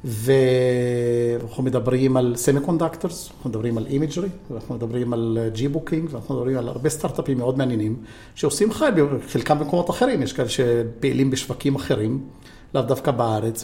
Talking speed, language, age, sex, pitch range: 150 wpm, Hebrew, 50-69, male, 125-155 Hz